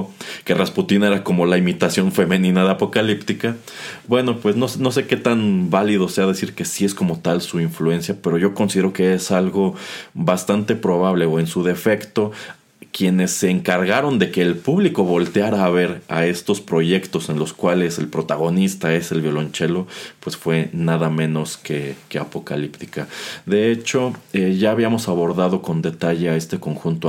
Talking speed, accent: 170 wpm, Mexican